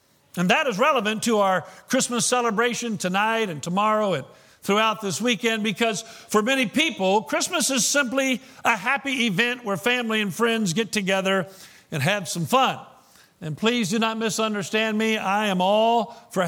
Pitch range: 185-235 Hz